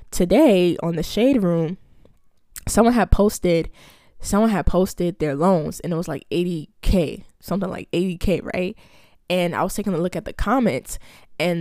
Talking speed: 165 wpm